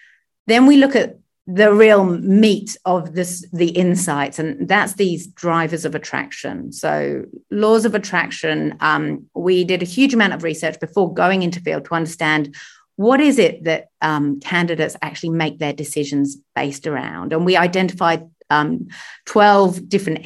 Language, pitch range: English, 155-205 Hz